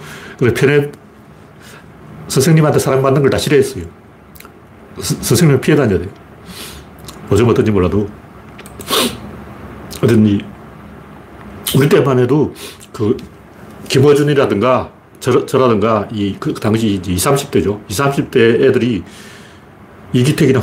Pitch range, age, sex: 110-155 Hz, 40-59, male